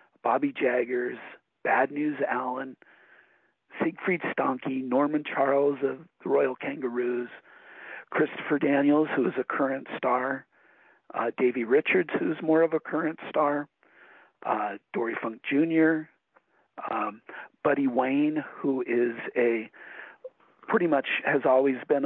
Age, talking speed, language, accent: 50-69, 120 wpm, English, American